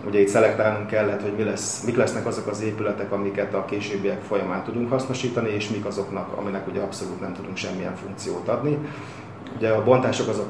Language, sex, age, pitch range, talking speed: Hungarian, male, 30-49, 100-115 Hz, 190 wpm